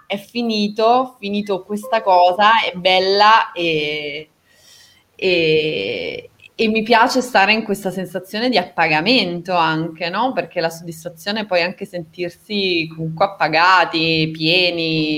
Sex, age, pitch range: female, 20-39, 170-215 Hz